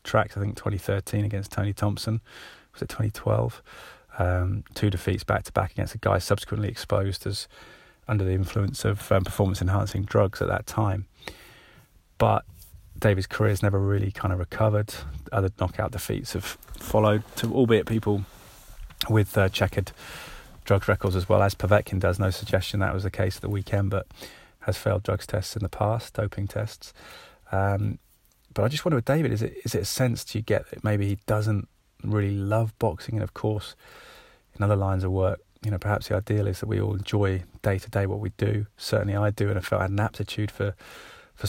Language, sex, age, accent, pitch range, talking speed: English, male, 20-39, British, 95-110 Hz, 200 wpm